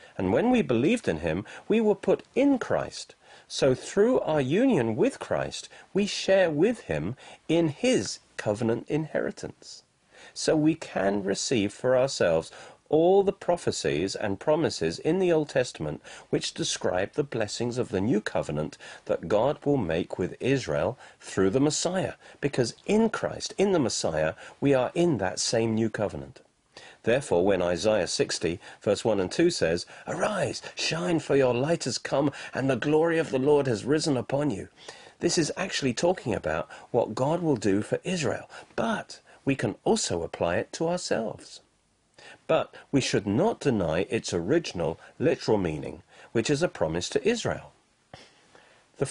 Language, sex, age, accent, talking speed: English, male, 40-59, British, 160 wpm